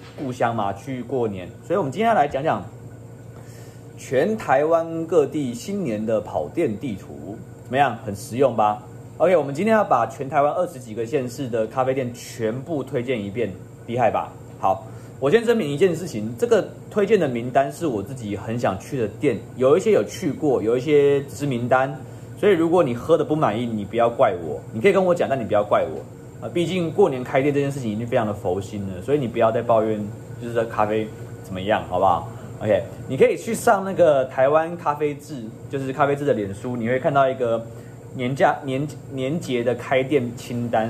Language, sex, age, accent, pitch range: Chinese, male, 30-49, native, 115-140 Hz